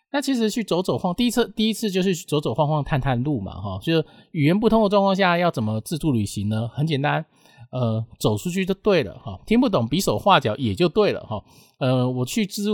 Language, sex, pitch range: Chinese, male, 120-175 Hz